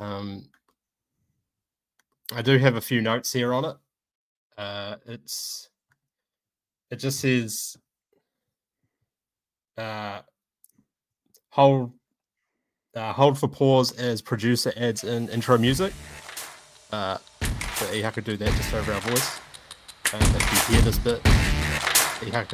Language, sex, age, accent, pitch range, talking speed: English, male, 20-39, Australian, 105-120 Hz, 115 wpm